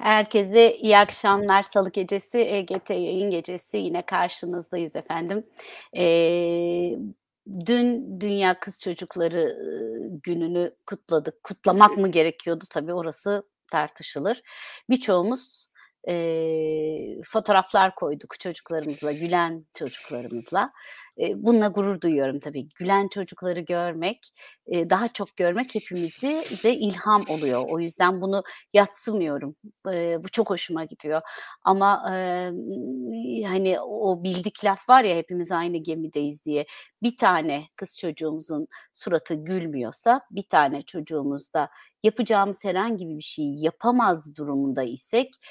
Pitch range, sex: 165-220 Hz, female